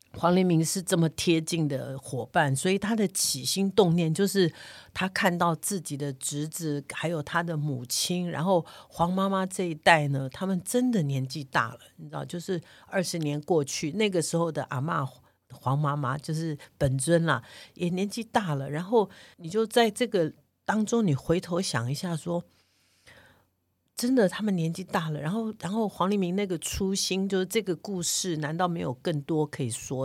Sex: female